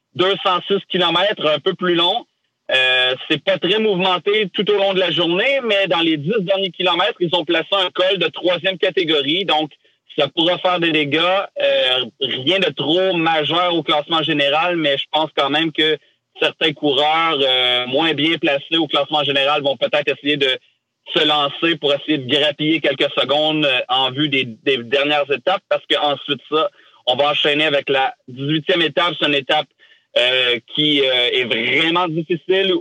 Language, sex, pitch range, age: French, male, 145-180 Hz, 30-49